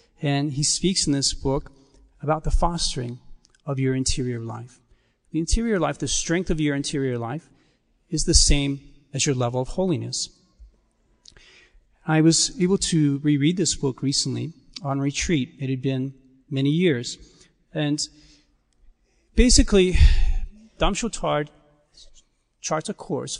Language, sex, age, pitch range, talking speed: English, male, 40-59, 145-180 Hz, 130 wpm